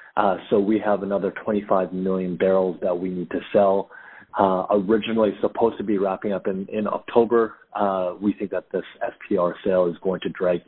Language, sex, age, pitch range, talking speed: English, male, 30-49, 95-110 Hz, 190 wpm